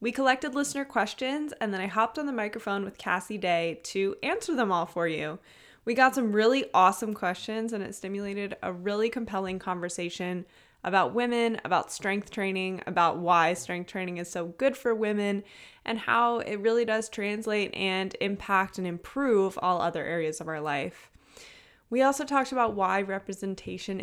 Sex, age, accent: female, 20-39, American